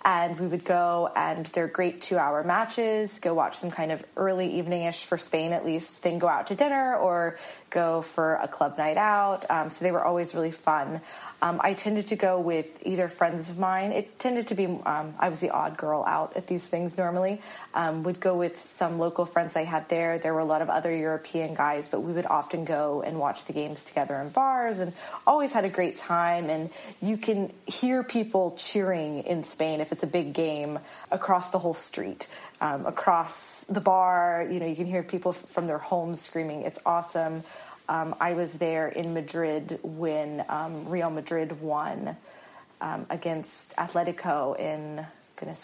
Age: 20-39